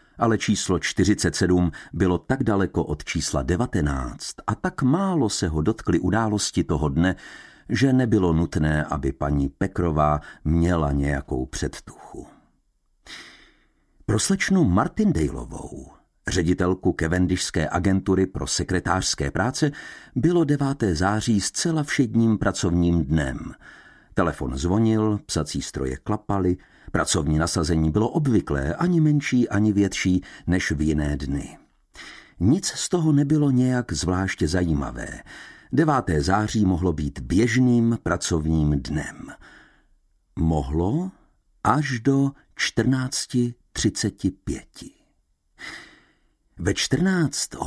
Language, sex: Czech, male